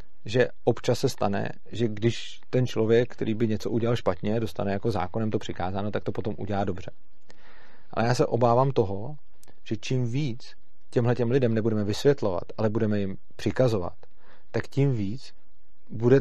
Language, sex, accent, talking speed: Czech, male, native, 160 wpm